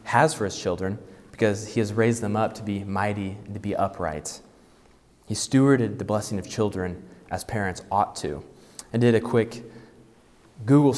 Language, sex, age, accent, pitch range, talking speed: English, male, 20-39, American, 95-115 Hz, 175 wpm